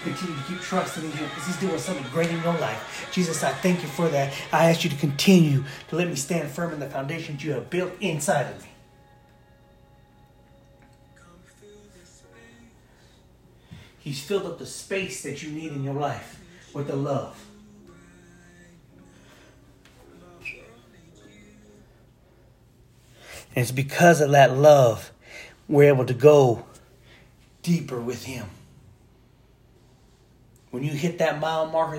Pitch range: 130-160 Hz